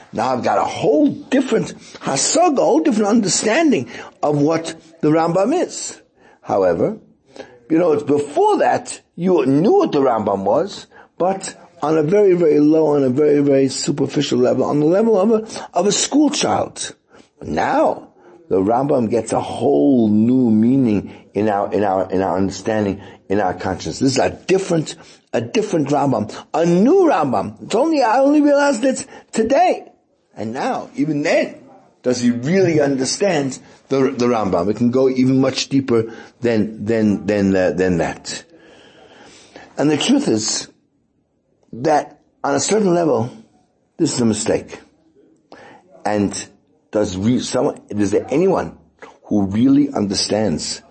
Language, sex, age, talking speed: English, male, 60-79, 150 wpm